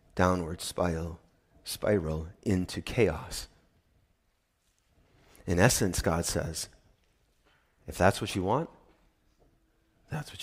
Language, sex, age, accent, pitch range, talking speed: English, male, 30-49, American, 85-105 Hz, 90 wpm